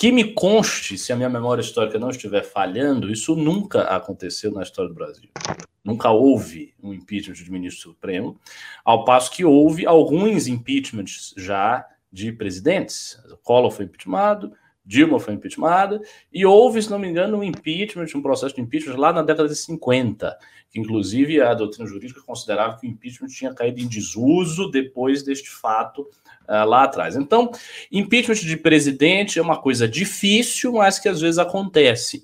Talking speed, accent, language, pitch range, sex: 165 wpm, Brazilian, Portuguese, 115-195 Hz, male